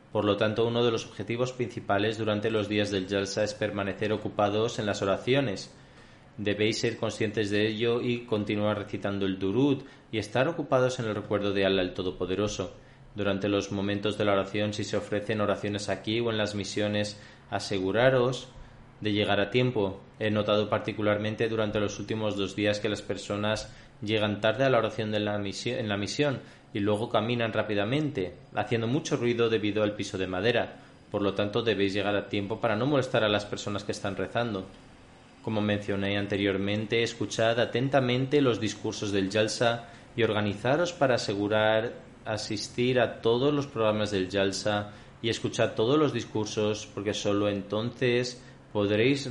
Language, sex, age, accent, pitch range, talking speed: Spanish, male, 20-39, Spanish, 105-120 Hz, 170 wpm